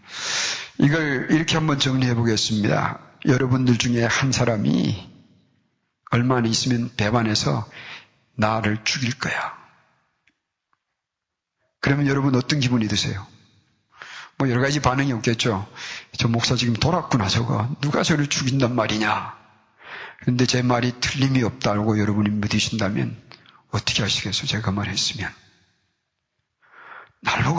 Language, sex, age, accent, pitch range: Korean, male, 40-59, native, 115-145 Hz